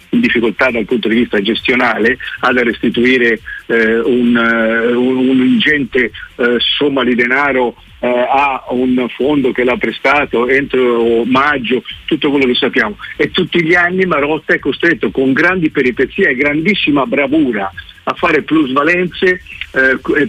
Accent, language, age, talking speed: native, Italian, 50-69, 140 wpm